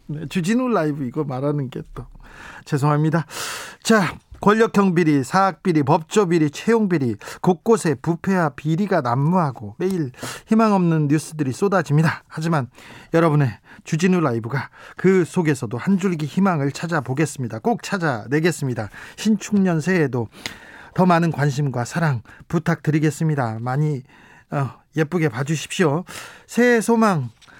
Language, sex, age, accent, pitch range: Korean, male, 40-59, native, 145-190 Hz